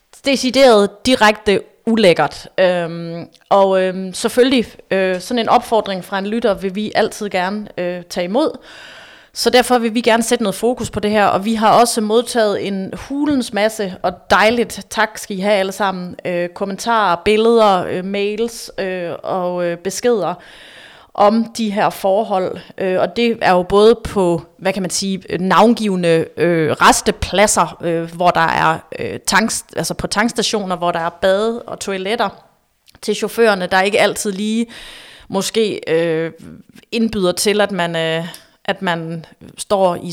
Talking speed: 160 wpm